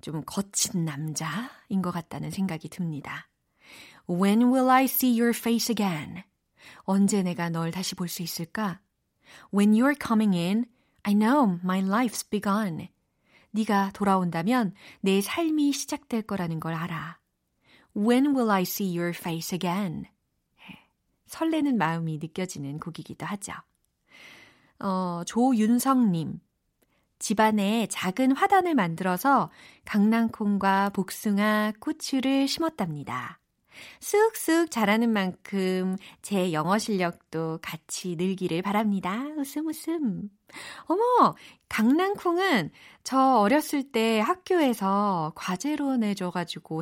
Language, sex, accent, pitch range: Korean, female, native, 175-240 Hz